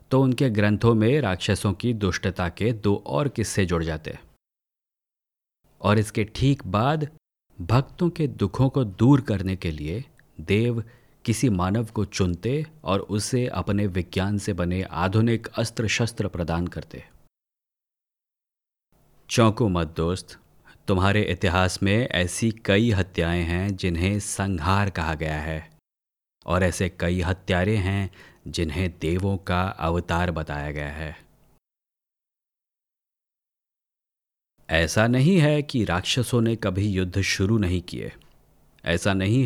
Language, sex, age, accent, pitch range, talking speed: Hindi, male, 30-49, native, 90-115 Hz, 125 wpm